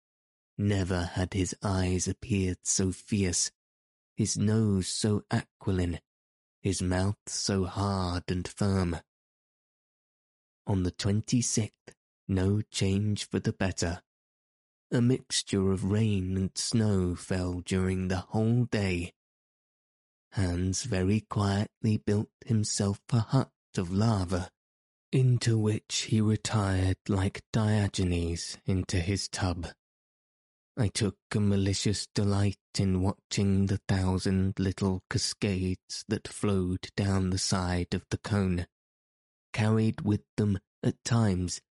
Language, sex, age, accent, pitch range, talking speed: English, male, 20-39, British, 95-105 Hz, 110 wpm